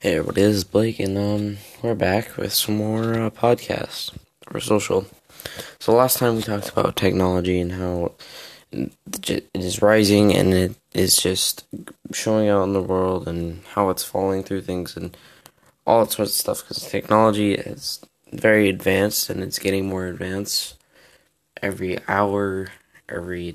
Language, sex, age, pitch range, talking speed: English, male, 20-39, 95-105 Hz, 155 wpm